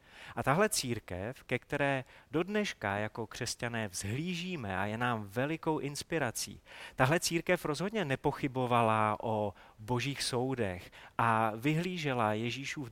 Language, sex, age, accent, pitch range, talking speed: Czech, male, 30-49, native, 110-155 Hz, 115 wpm